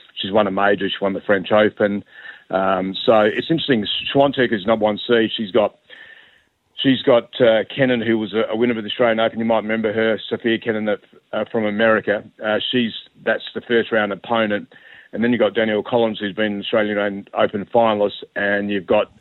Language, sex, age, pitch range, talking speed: English, male, 40-59, 100-115 Hz, 195 wpm